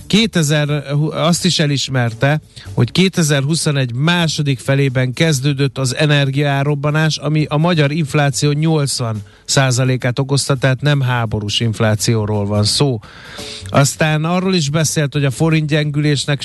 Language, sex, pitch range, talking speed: Hungarian, male, 120-150 Hz, 115 wpm